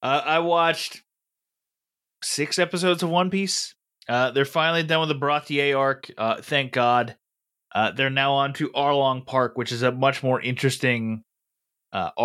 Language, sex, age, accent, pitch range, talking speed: English, male, 20-39, American, 120-150 Hz, 160 wpm